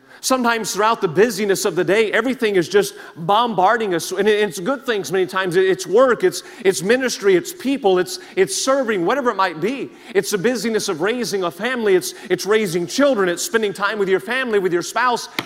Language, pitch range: English, 160-235 Hz